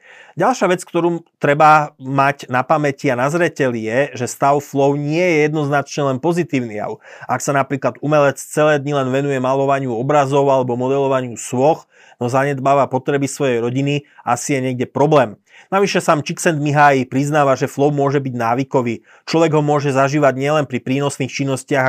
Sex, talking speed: male, 160 wpm